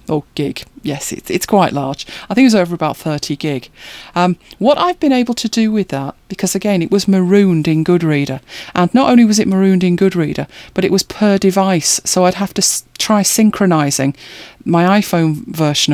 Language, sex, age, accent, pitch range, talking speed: English, female, 40-59, British, 155-205 Hz, 205 wpm